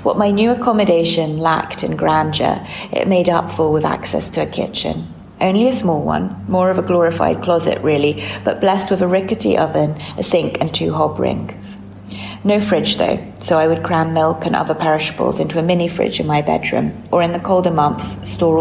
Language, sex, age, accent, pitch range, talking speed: English, female, 30-49, British, 155-195 Hz, 200 wpm